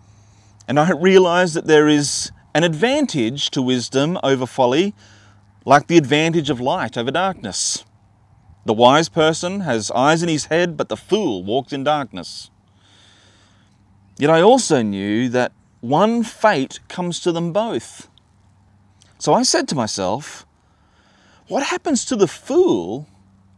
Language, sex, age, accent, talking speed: English, male, 30-49, Australian, 135 wpm